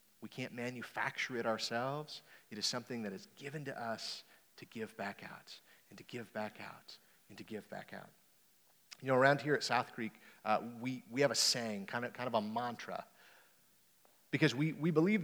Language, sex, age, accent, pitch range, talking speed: English, male, 40-59, American, 125-165 Hz, 195 wpm